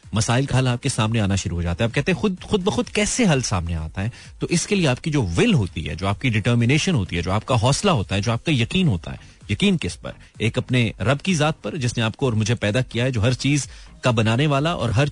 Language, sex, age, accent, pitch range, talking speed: Hindi, male, 30-49, native, 105-155 Hz, 270 wpm